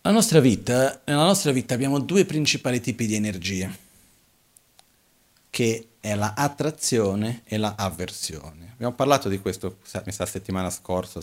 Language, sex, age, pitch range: Italian, male, 40-59, 95-125 Hz